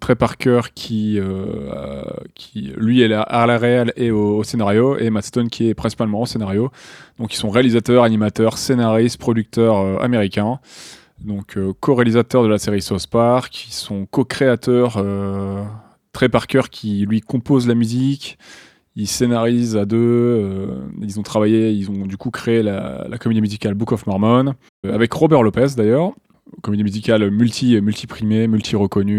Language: French